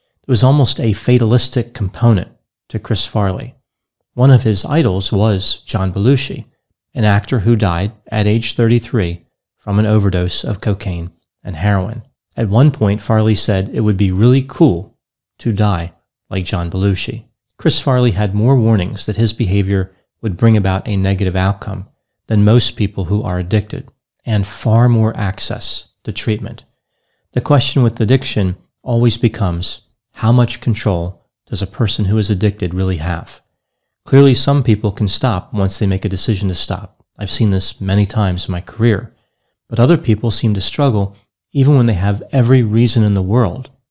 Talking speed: 170 wpm